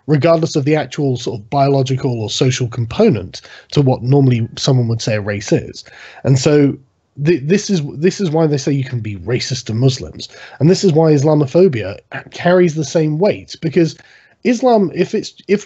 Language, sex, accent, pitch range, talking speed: English, male, British, 135-180 Hz, 190 wpm